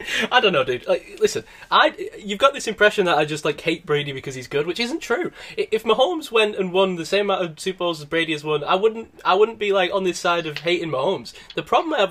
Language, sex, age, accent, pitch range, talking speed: English, male, 10-29, British, 150-230 Hz, 260 wpm